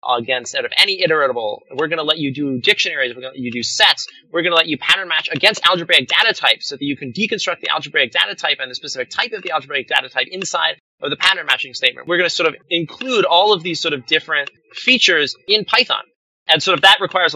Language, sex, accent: English, male, American